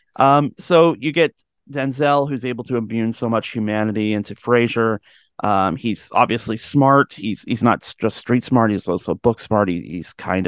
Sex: male